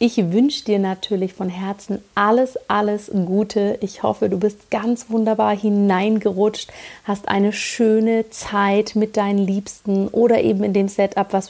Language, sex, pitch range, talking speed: German, female, 180-210 Hz, 150 wpm